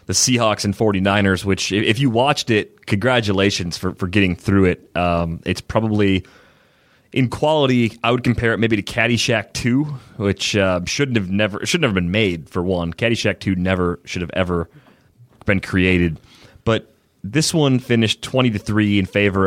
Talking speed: 170 wpm